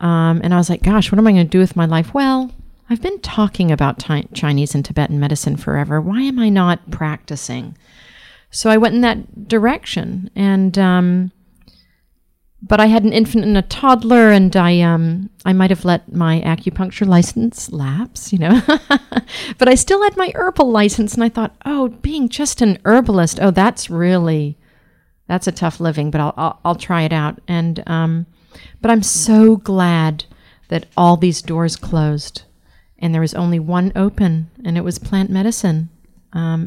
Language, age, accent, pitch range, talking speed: English, 50-69, American, 165-210 Hz, 180 wpm